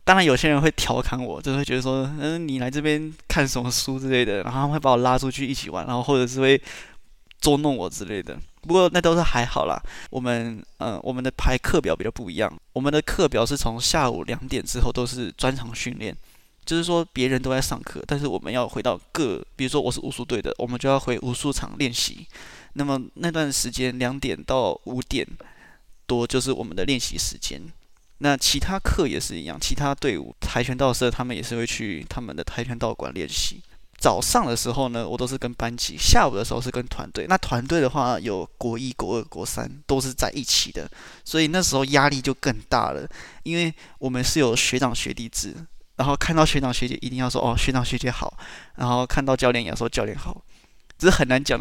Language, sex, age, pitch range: Chinese, male, 20-39, 120-140 Hz